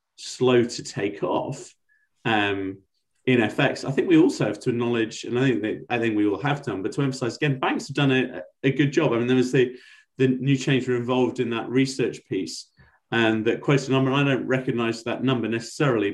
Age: 30-49